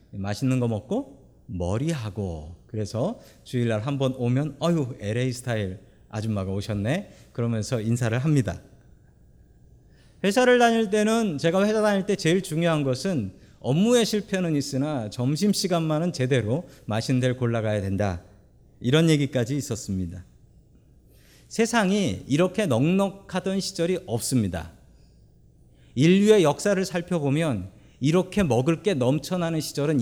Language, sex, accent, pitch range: Korean, male, native, 110-175 Hz